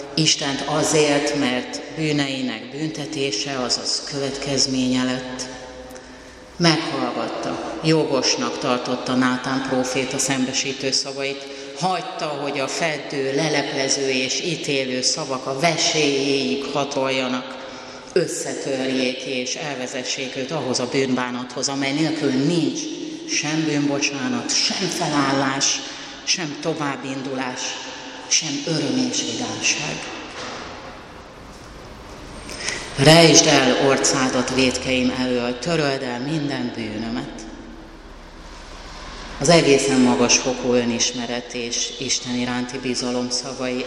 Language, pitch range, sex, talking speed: Hungarian, 125-145 Hz, female, 90 wpm